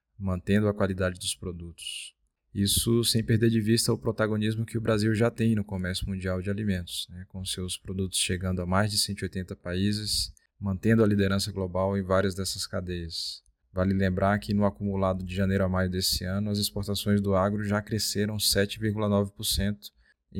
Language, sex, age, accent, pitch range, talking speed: Portuguese, male, 20-39, Brazilian, 95-110 Hz, 170 wpm